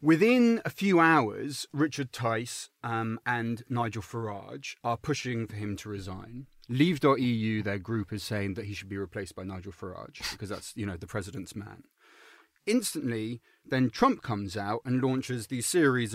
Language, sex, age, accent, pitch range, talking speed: English, male, 30-49, British, 105-130 Hz, 165 wpm